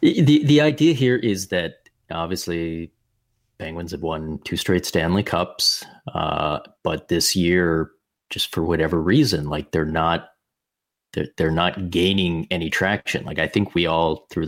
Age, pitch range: 30-49, 80-100 Hz